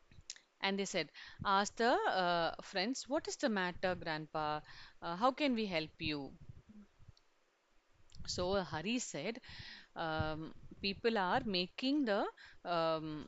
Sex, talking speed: female, 125 wpm